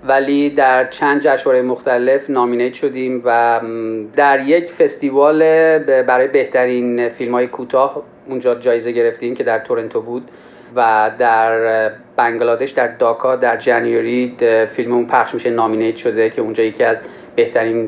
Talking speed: 135 wpm